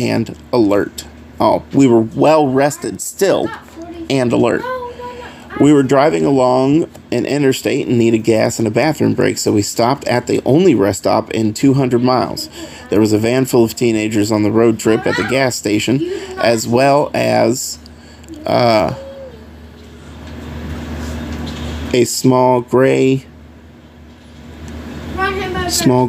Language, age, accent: English, 30-49, American